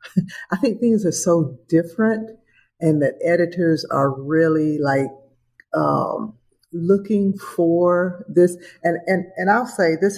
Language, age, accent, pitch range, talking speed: English, 50-69, American, 155-195 Hz, 130 wpm